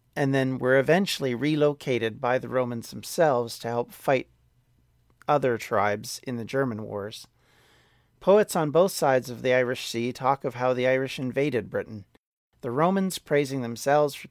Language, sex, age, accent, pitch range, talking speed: English, male, 40-59, American, 120-150 Hz, 160 wpm